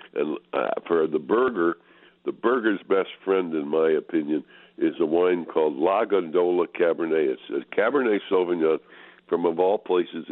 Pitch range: 330-430 Hz